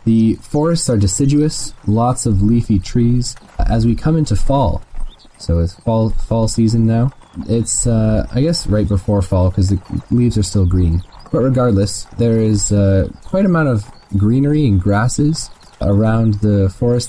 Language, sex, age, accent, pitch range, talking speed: English, male, 20-39, American, 100-120 Hz, 165 wpm